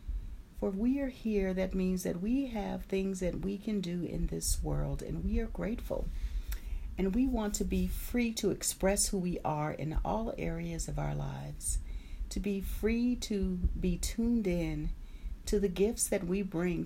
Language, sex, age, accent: English, female, 40-59, American